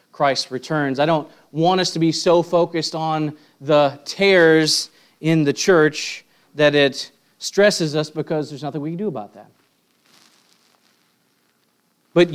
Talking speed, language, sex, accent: 140 wpm, English, male, American